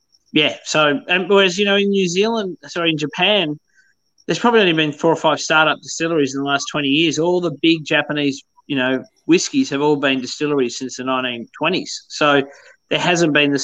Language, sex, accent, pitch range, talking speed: English, male, Australian, 140-160 Hz, 200 wpm